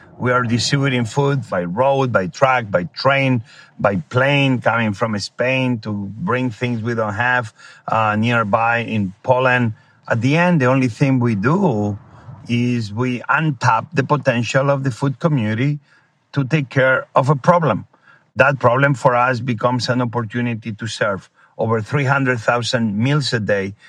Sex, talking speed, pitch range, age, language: male, 155 wpm, 115-130 Hz, 50-69, English